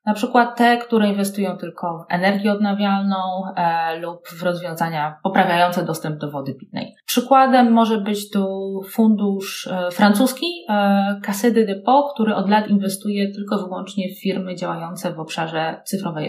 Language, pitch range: Polish, 175-230 Hz